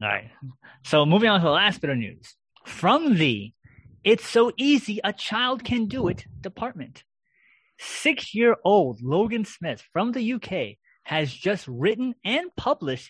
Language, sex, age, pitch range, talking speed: English, male, 30-49, 140-205 Hz, 120 wpm